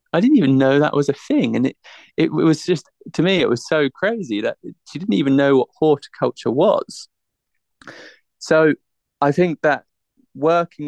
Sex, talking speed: male, 175 wpm